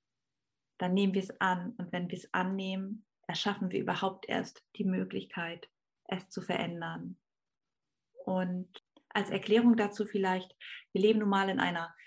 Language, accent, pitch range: German, German, 180-210 Hz